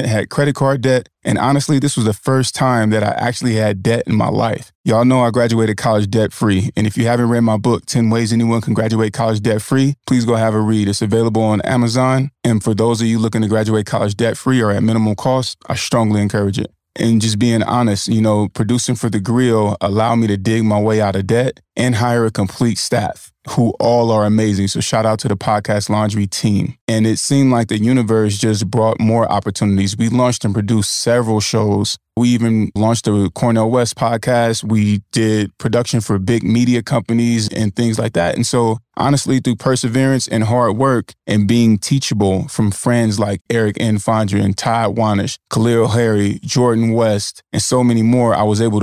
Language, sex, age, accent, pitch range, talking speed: English, male, 20-39, American, 105-120 Hz, 205 wpm